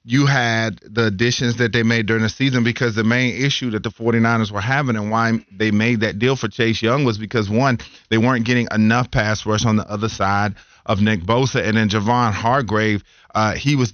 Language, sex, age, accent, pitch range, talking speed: English, male, 40-59, American, 105-120 Hz, 220 wpm